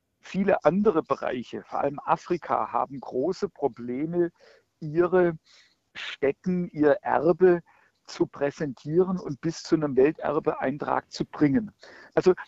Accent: German